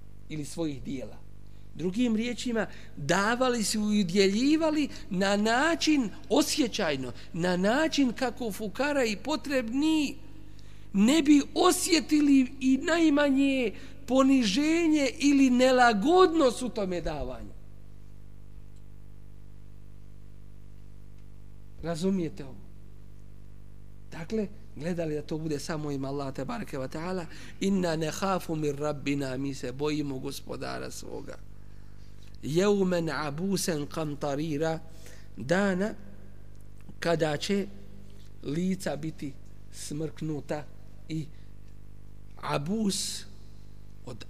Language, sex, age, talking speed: English, male, 50-69, 80 wpm